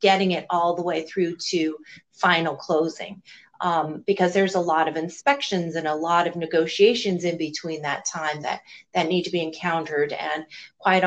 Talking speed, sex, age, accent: 180 wpm, female, 30-49, American